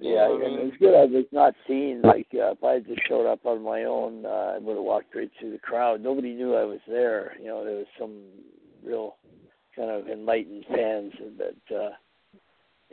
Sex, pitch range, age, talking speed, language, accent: male, 105-120 Hz, 60-79, 215 wpm, English, American